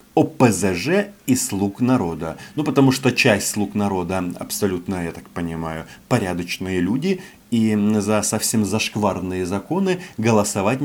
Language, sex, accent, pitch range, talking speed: Russian, male, native, 95-140 Hz, 125 wpm